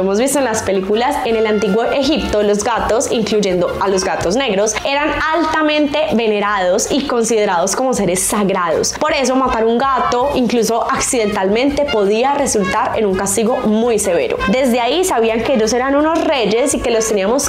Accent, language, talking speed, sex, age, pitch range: Colombian, Spanish, 170 wpm, female, 10-29, 215-275 Hz